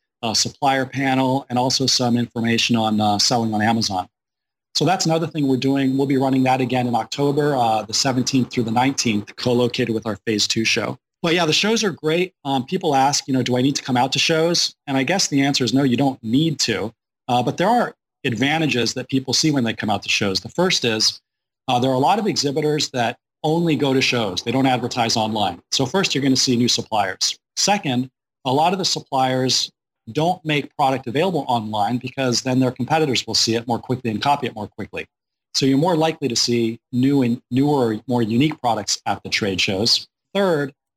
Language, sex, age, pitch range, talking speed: English, male, 30-49, 115-140 Hz, 220 wpm